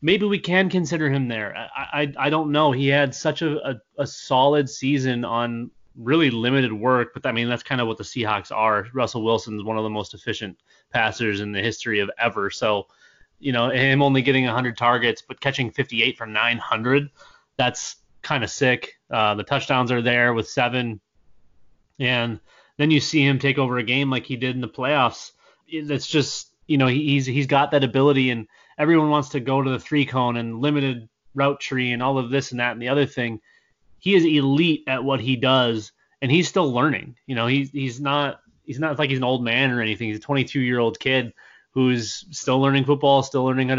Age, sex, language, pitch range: 20-39, male, English, 120-140 Hz